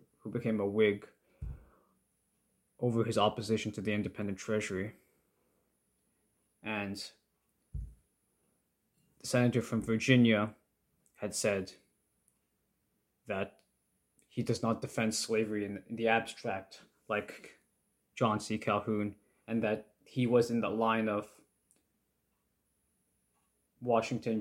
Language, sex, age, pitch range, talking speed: English, male, 20-39, 105-115 Hz, 100 wpm